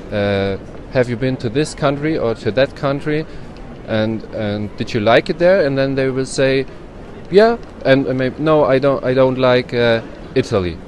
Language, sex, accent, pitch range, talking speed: English, male, German, 100-120 Hz, 195 wpm